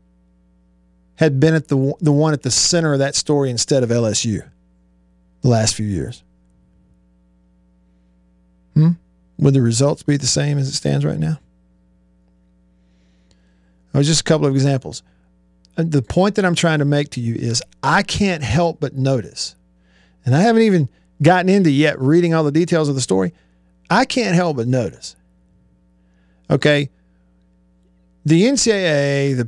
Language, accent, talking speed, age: English, American, 155 wpm, 50-69